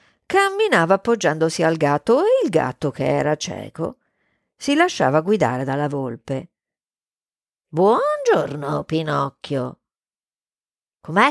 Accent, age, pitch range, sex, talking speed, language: native, 50-69, 175-280 Hz, female, 95 wpm, Italian